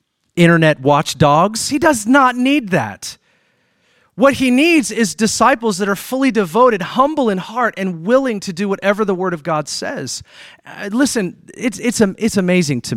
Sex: male